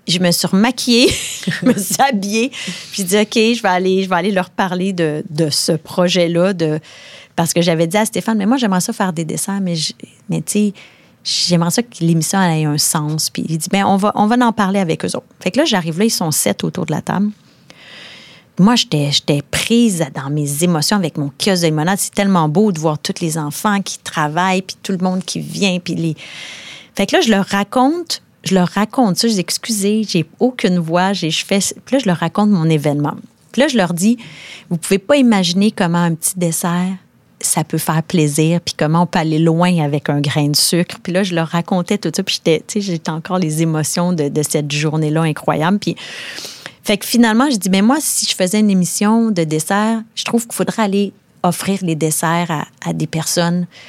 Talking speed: 220 wpm